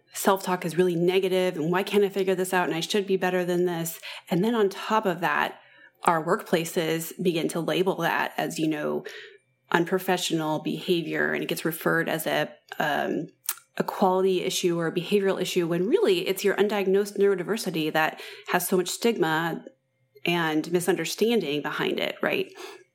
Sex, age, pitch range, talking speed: female, 30-49, 165-200 Hz, 170 wpm